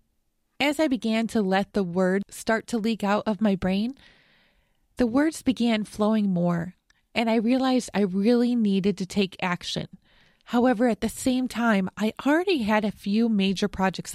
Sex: female